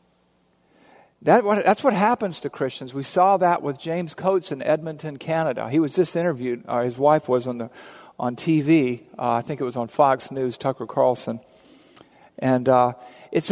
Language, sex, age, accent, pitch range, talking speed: English, male, 50-69, American, 125-175 Hz, 180 wpm